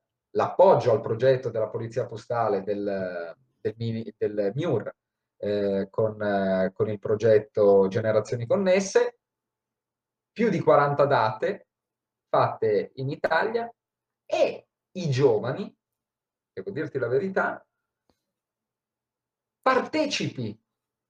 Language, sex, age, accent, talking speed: Italian, male, 40-59, native, 90 wpm